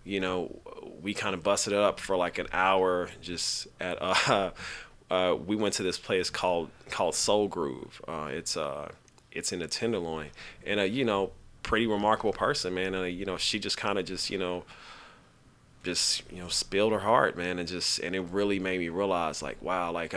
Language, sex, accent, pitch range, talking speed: English, male, American, 85-100 Hz, 205 wpm